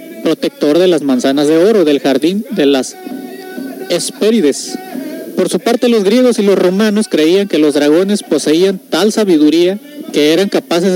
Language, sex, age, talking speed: Spanish, male, 40-59, 160 wpm